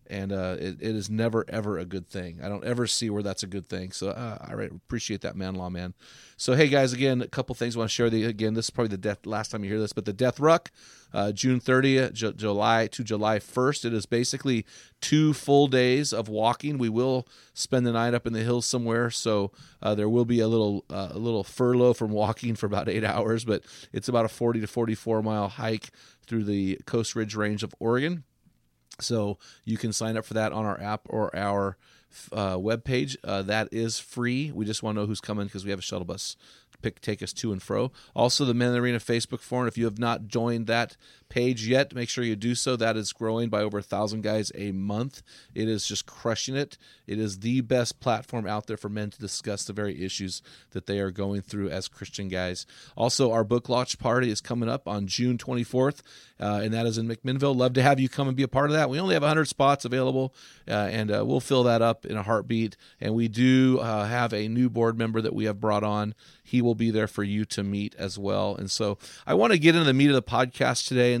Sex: male